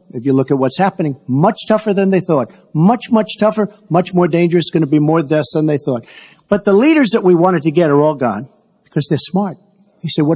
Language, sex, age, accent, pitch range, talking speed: English, male, 50-69, American, 155-200 Hz, 240 wpm